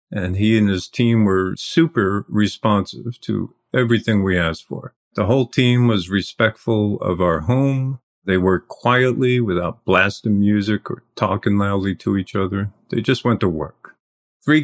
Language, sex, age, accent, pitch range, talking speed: English, male, 50-69, American, 95-120 Hz, 160 wpm